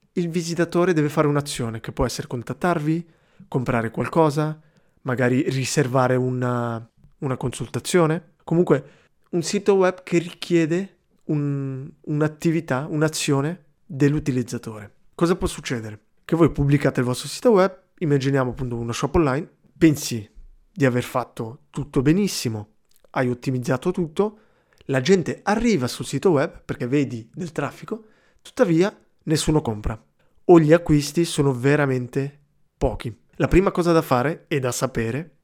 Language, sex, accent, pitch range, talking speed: Italian, male, native, 125-170 Hz, 130 wpm